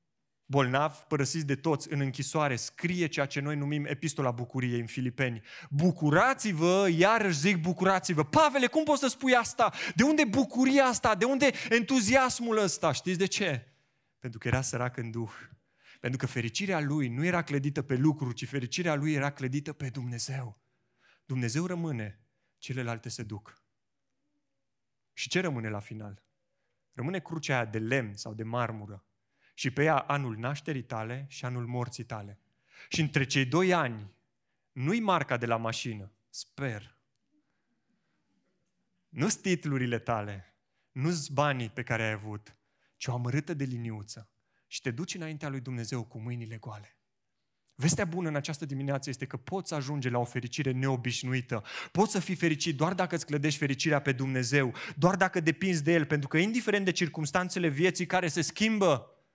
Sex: male